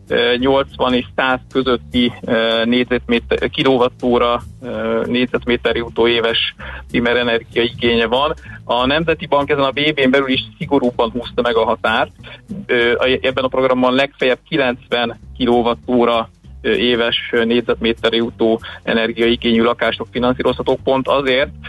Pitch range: 115-125 Hz